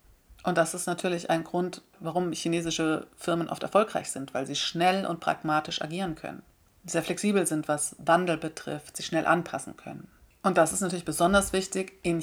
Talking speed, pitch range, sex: 175 wpm, 155-180 Hz, female